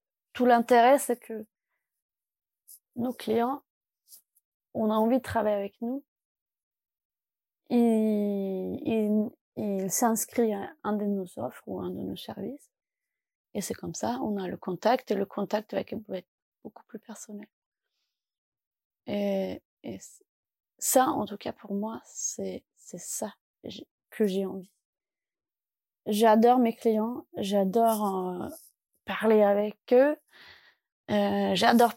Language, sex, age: French, female, 20-39